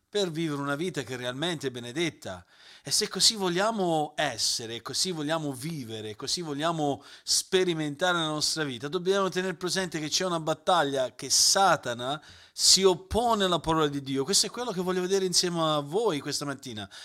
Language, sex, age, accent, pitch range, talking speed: Italian, male, 40-59, native, 135-185 Hz, 170 wpm